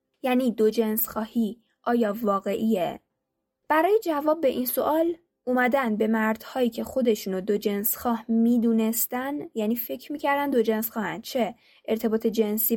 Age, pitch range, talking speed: 10-29, 220-285 Hz, 140 wpm